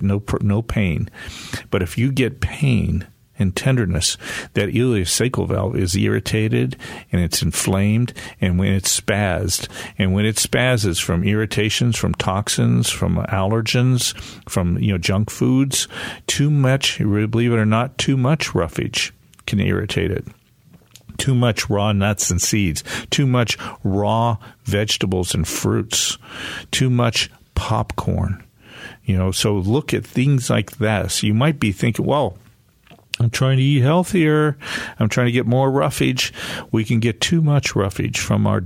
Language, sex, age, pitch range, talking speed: English, male, 50-69, 100-125 Hz, 150 wpm